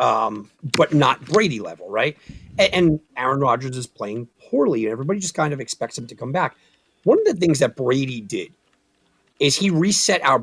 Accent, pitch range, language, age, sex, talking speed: American, 130-210 Hz, English, 40-59, male, 190 wpm